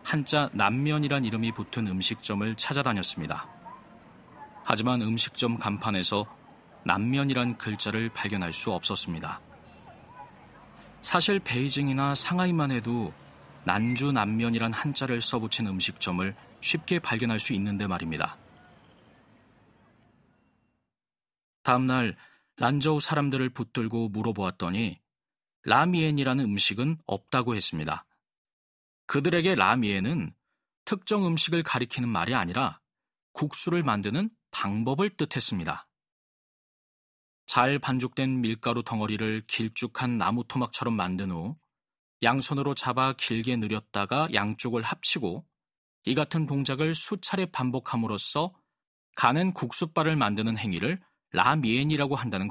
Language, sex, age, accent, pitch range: Korean, male, 40-59, native, 110-145 Hz